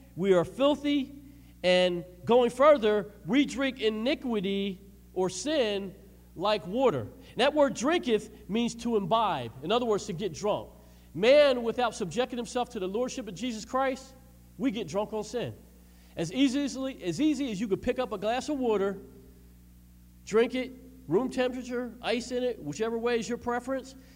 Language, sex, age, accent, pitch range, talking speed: English, male, 40-59, American, 170-240 Hz, 165 wpm